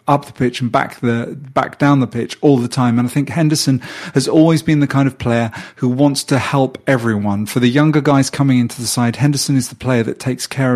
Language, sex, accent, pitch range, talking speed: English, male, British, 120-145 Hz, 245 wpm